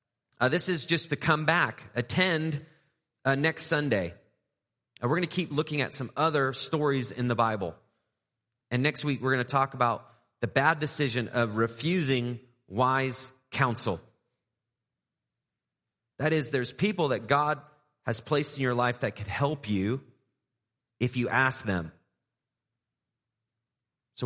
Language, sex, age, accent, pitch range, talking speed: English, male, 30-49, American, 110-135 Hz, 140 wpm